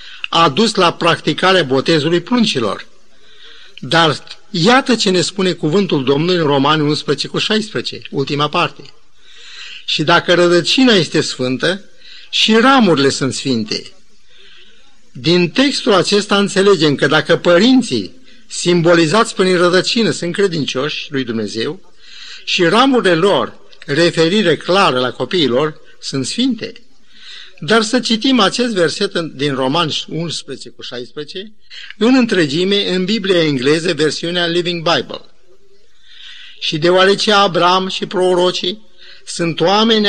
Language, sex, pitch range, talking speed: Romanian, male, 155-215 Hz, 115 wpm